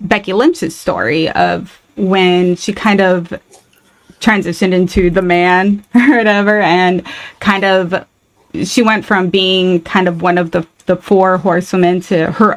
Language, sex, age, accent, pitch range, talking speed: English, female, 20-39, American, 180-205 Hz, 150 wpm